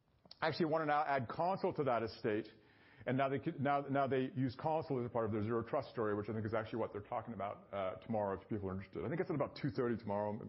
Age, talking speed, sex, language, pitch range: 40-59, 270 wpm, male, English, 110-150 Hz